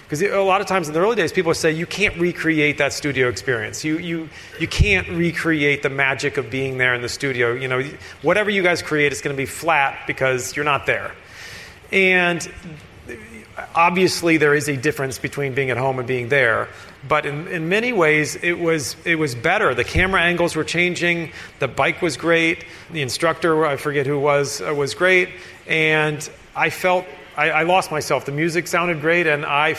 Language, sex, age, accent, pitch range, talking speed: English, male, 40-59, American, 135-170 Hz, 205 wpm